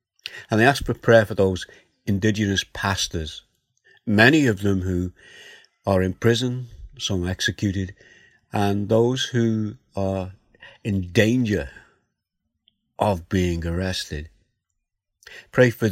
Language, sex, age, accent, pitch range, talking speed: English, male, 60-79, British, 90-115 Hz, 110 wpm